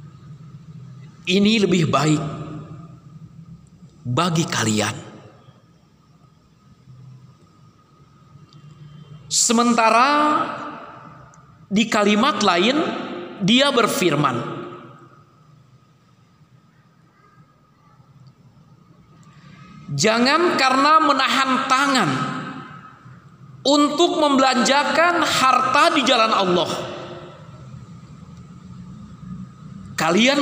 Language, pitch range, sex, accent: Indonesian, 145-210 Hz, male, native